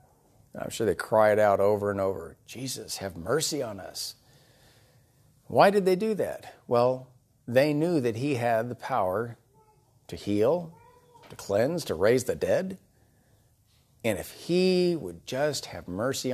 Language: English